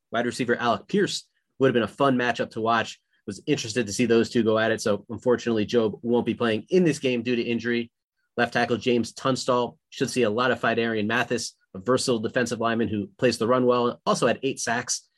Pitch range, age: 115-145 Hz, 30-49